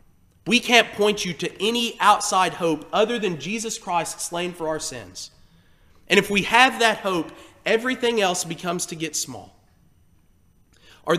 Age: 30-49